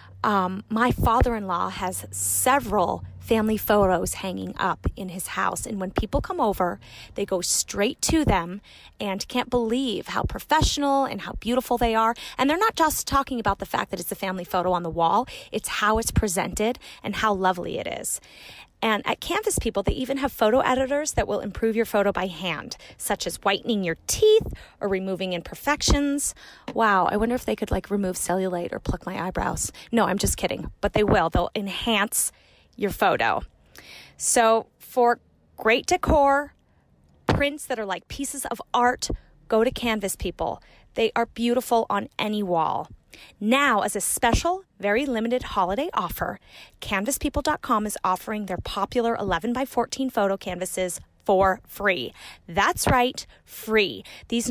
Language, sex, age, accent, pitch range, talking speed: English, female, 20-39, American, 195-255 Hz, 165 wpm